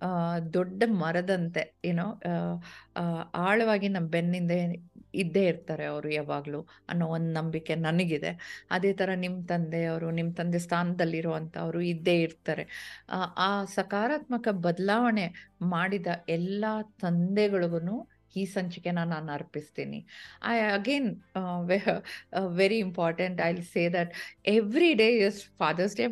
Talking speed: 115 wpm